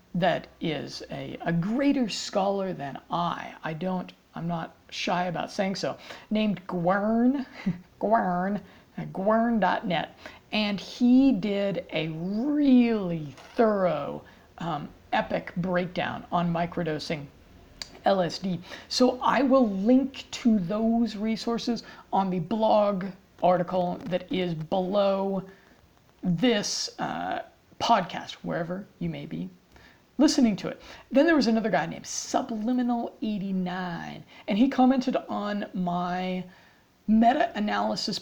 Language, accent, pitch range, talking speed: English, American, 180-235 Hz, 110 wpm